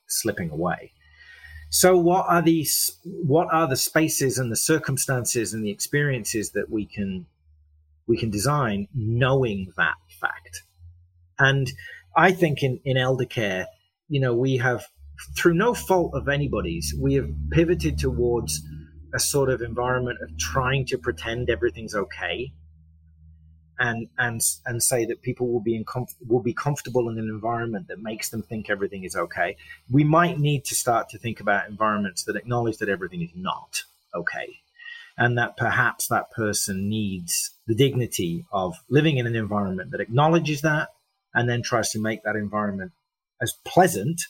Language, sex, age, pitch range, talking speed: English, male, 30-49, 100-145 Hz, 160 wpm